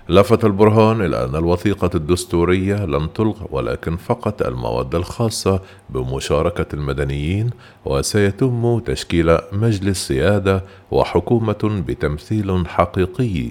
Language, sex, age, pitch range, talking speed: Arabic, male, 40-59, 80-100 Hz, 95 wpm